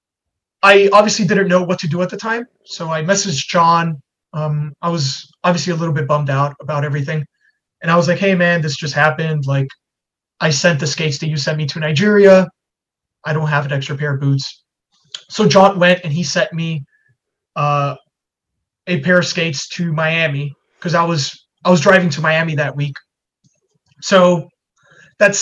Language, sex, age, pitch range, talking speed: English, male, 20-39, 145-175 Hz, 185 wpm